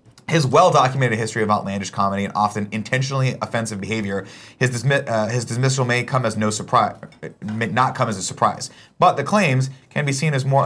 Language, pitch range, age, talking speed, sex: English, 105-130 Hz, 30-49, 195 wpm, male